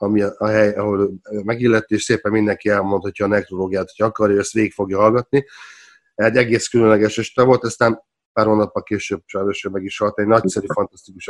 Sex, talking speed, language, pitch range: male, 170 wpm, Hungarian, 105-120 Hz